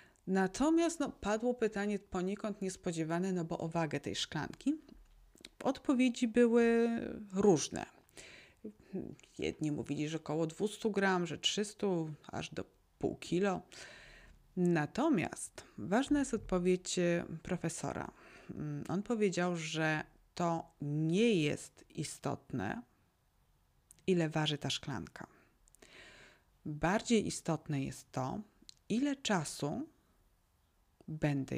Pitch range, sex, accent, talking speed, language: 160-235 Hz, female, native, 95 wpm, Polish